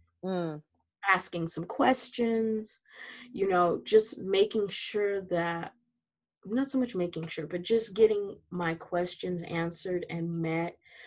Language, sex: English, female